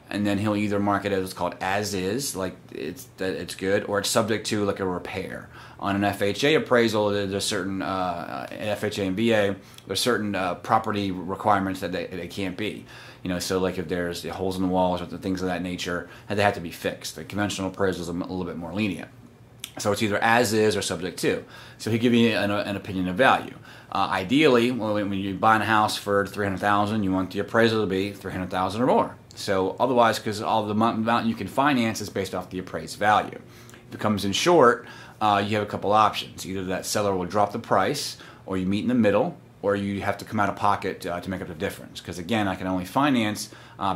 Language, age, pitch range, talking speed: English, 30-49, 95-110 Hz, 225 wpm